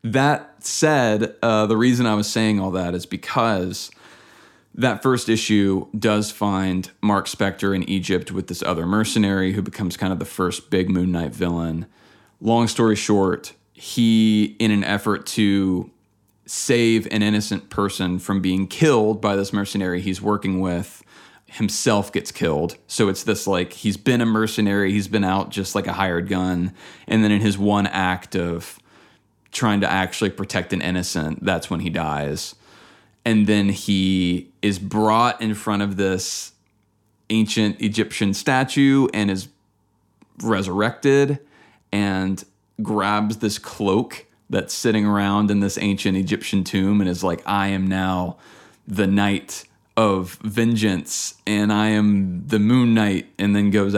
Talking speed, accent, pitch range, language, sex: 155 wpm, American, 95-110 Hz, English, male